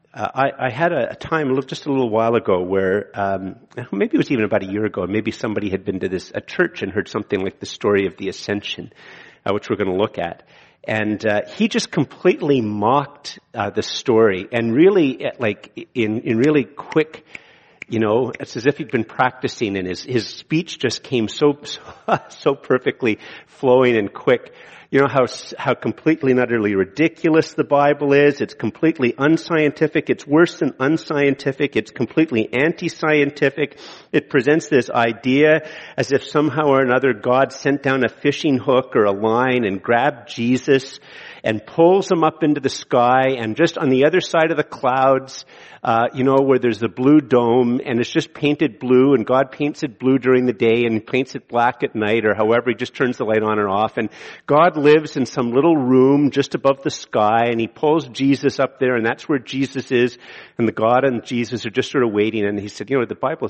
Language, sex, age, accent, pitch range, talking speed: English, male, 50-69, American, 115-150 Hz, 205 wpm